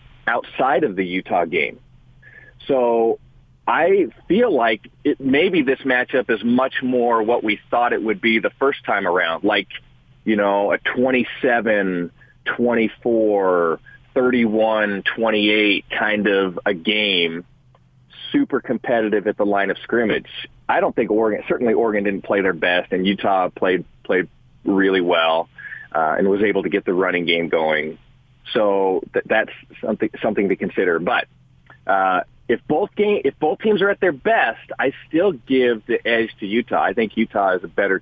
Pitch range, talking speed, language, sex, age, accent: 100-130 Hz, 160 wpm, English, male, 30-49, American